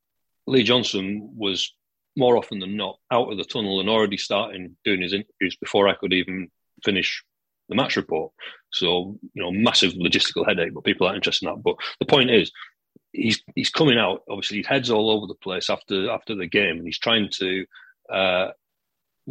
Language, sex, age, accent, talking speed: English, male, 40-59, British, 190 wpm